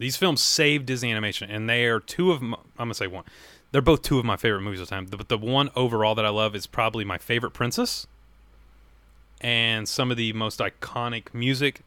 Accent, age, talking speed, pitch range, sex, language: American, 30-49, 225 wpm, 105-130 Hz, male, English